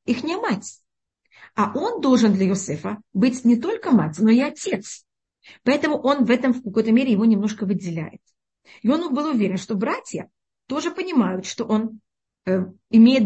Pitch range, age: 220-265 Hz, 30-49